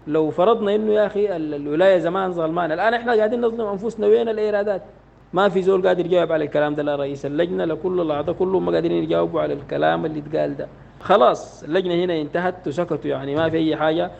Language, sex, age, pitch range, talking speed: English, male, 50-69, 155-195 Hz, 200 wpm